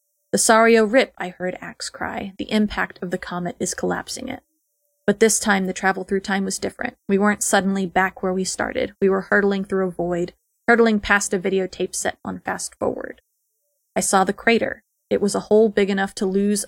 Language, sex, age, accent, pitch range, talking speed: English, female, 30-49, American, 190-215 Hz, 205 wpm